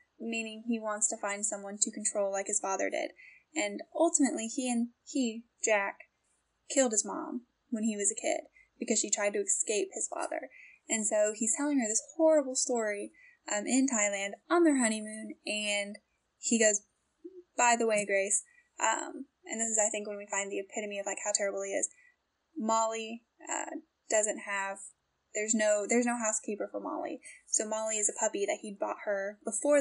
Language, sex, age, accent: English, female, 10-29, American